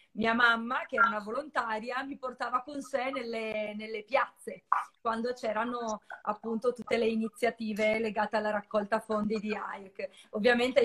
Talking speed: 145 wpm